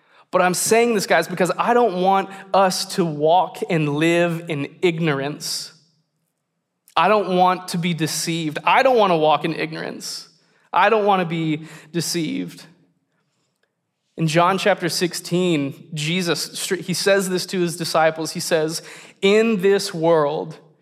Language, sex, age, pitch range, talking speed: English, male, 20-39, 155-185 Hz, 145 wpm